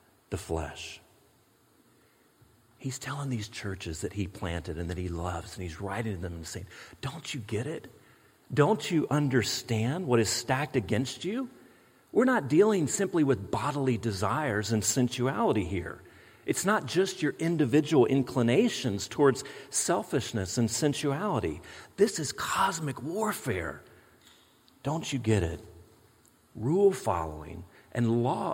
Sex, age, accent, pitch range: male, 40-59, American, 110-150 Hz